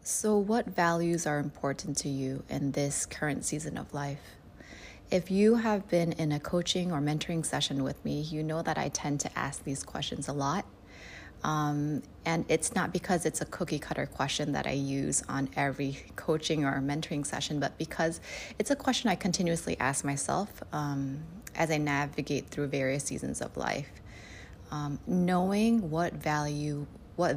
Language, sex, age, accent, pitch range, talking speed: English, female, 20-39, American, 140-170 Hz, 170 wpm